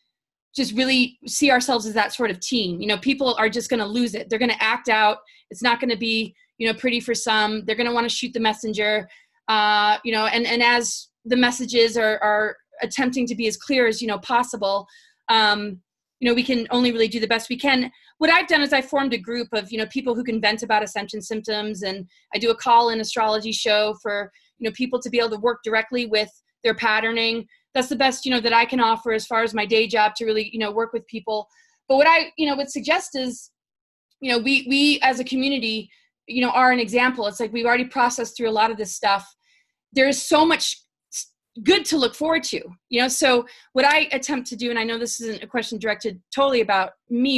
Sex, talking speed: female, 245 wpm